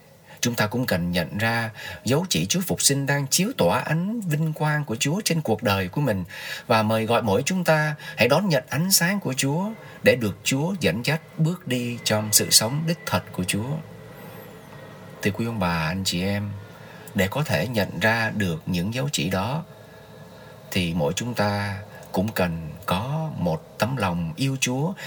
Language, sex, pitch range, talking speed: Vietnamese, male, 100-150 Hz, 190 wpm